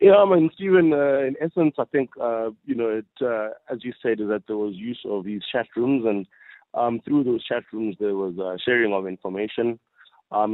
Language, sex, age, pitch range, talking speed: English, male, 30-49, 100-125 Hz, 215 wpm